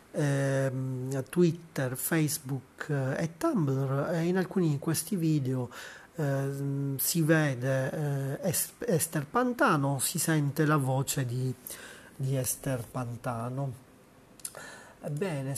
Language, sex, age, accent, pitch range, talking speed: Italian, male, 30-49, native, 135-160 Hz, 85 wpm